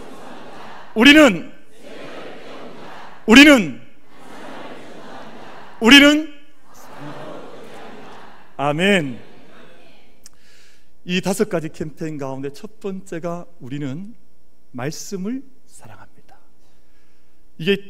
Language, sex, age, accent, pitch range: Korean, male, 40-59, native, 130-210 Hz